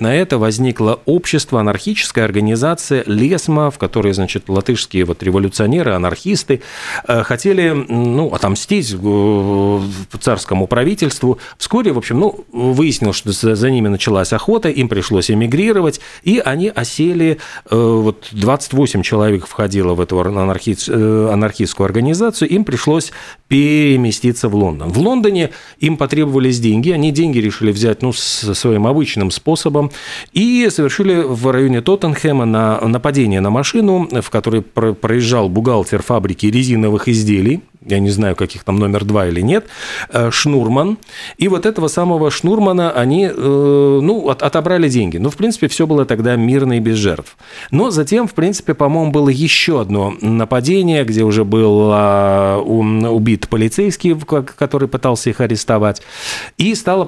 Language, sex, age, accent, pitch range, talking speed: Russian, male, 40-59, native, 105-150 Hz, 130 wpm